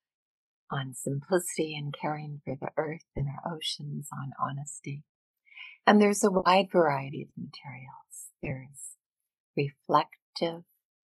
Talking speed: 115 wpm